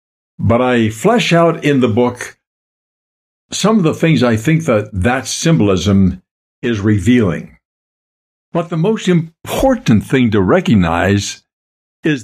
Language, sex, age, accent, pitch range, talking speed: English, male, 60-79, American, 100-150 Hz, 125 wpm